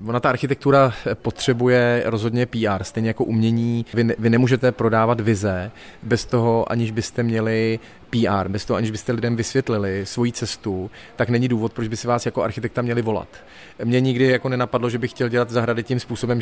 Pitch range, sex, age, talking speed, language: 110-125 Hz, male, 30-49, 185 wpm, Czech